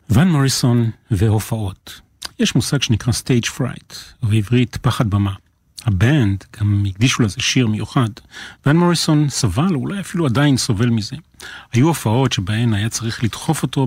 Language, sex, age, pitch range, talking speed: Hebrew, male, 40-59, 110-140 Hz, 140 wpm